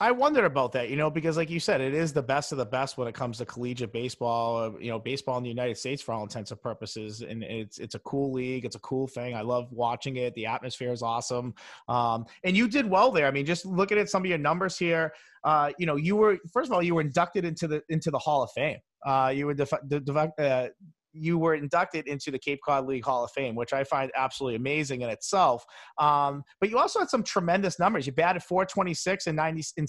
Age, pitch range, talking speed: 30-49, 130-165 Hz, 245 wpm